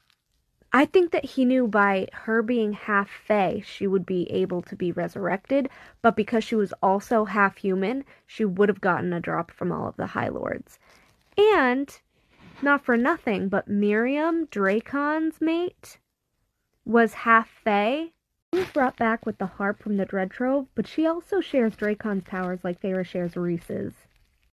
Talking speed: 160 wpm